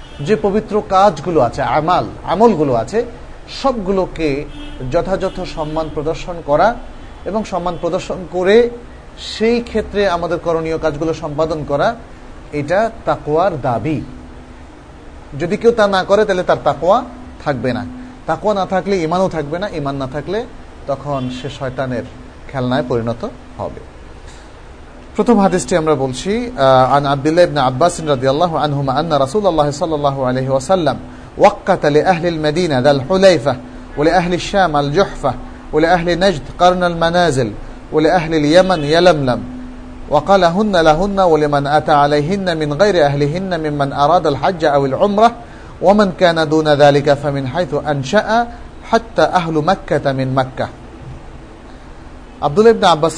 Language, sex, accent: Bengali, male, native